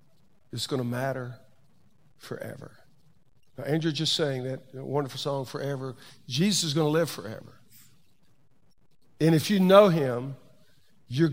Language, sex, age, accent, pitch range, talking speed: English, male, 50-69, American, 135-190 Hz, 130 wpm